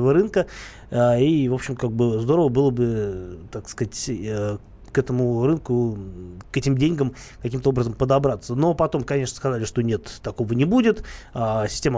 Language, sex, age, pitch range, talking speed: Russian, male, 20-39, 115-150 Hz, 150 wpm